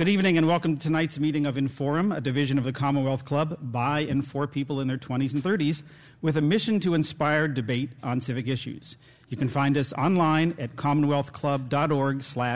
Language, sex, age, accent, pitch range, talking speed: English, male, 50-69, American, 125-150 Hz, 190 wpm